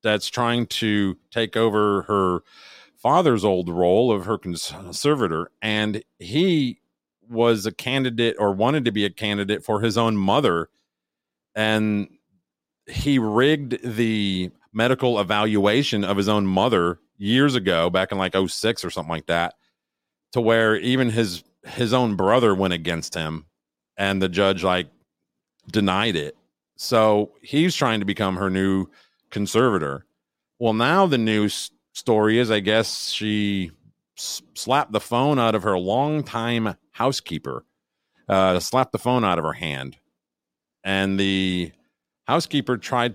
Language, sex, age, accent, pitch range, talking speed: English, male, 40-59, American, 95-120 Hz, 140 wpm